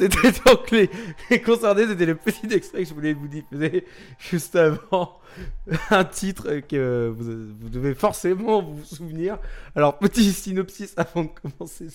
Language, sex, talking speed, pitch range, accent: French, male, 150 wpm, 150-205 Hz, French